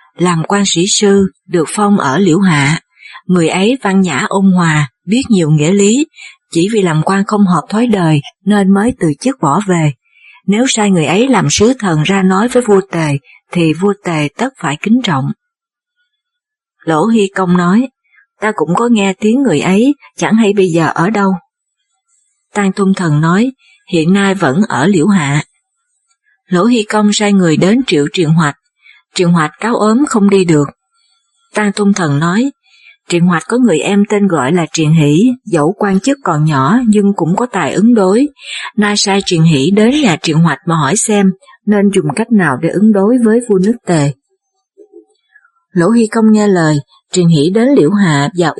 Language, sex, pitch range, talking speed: Vietnamese, female, 170-235 Hz, 190 wpm